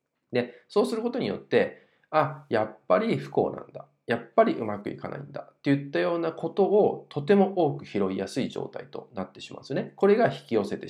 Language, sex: Japanese, male